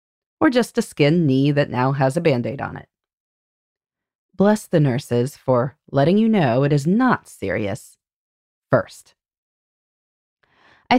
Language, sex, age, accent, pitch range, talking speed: English, female, 30-49, American, 140-200 Hz, 135 wpm